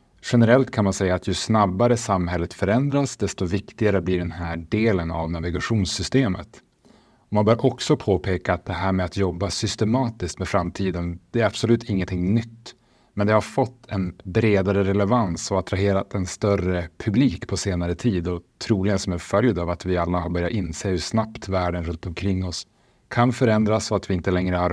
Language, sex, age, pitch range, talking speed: Swedish, male, 30-49, 90-115 Hz, 185 wpm